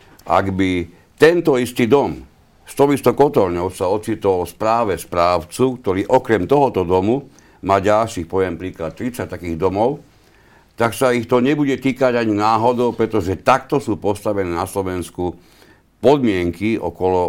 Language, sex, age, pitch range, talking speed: Slovak, male, 60-79, 85-110 Hz, 130 wpm